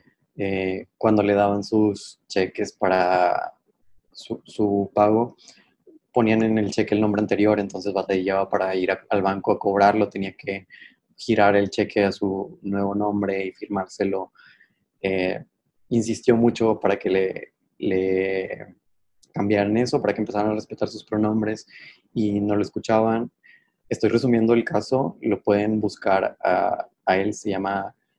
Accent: Mexican